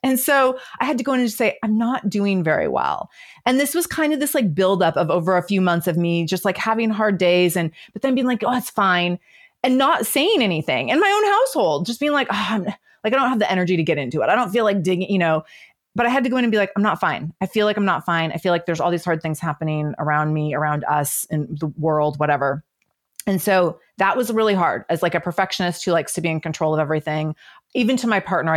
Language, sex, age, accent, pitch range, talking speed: English, female, 30-49, American, 165-225 Hz, 270 wpm